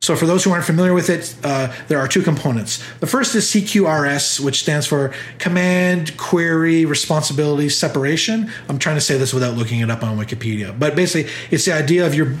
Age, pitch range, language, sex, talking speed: 30-49, 135-165 Hz, English, male, 205 wpm